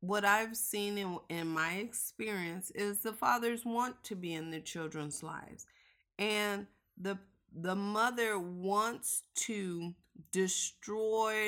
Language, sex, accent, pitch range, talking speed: English, female, American, 180-220 Hz, 125 wpm